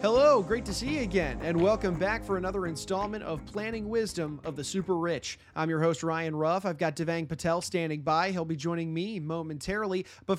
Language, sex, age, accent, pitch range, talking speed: English, male, 30-49, American, 150-190 Hz, 210 wpm